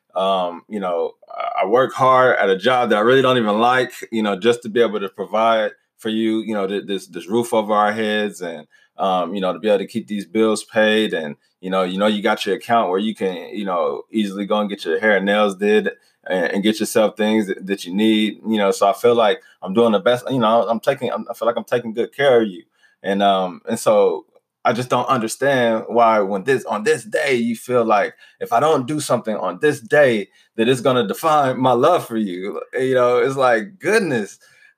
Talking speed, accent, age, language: 240 wpm, American, 20-39, English